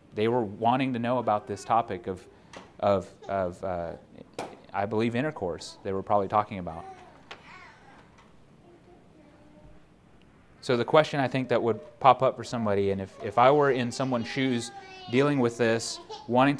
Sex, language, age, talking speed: male, English, 30-49, 155 wpm